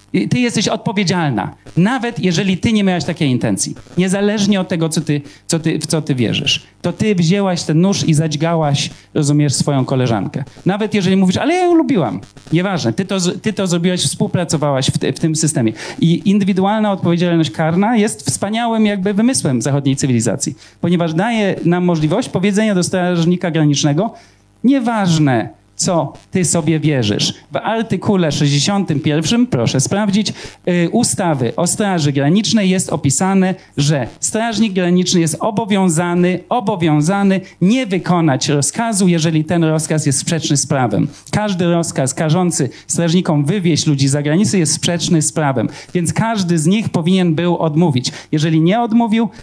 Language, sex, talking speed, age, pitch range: Polish, male, 140 wpm, 40-59, 150-195 Hz